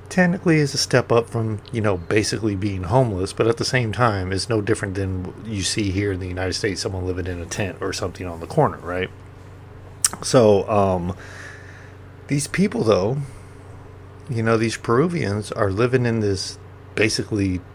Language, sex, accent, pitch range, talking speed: English, male, American, 100-130 Hz, 175 wpm